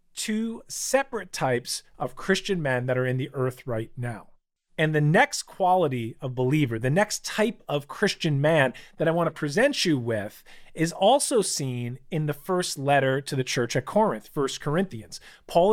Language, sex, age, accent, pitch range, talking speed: English, male, 40-59, American, 130-180 Hz, 180 wpm